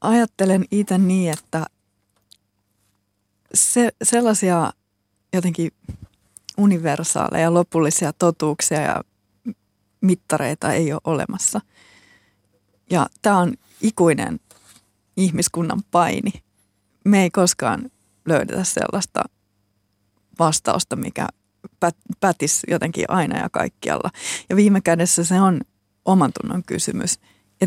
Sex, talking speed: female, 95 wpm